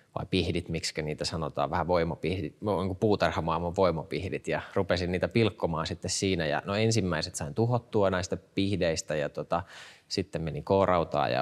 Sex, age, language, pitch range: male, 20-39, Finnish, 90-120 Hz